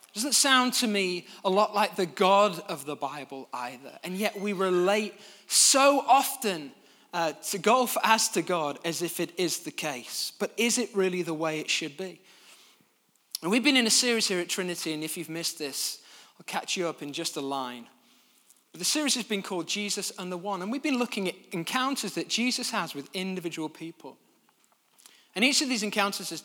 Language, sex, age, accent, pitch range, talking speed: English, male, 20-39, British, 165-235 Hz, 200 wpm